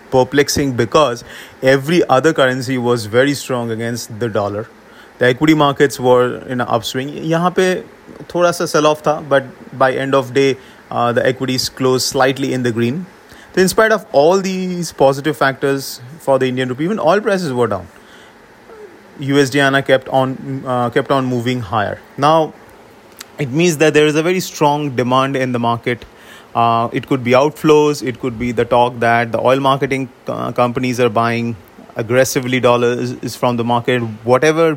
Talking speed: 165 wpm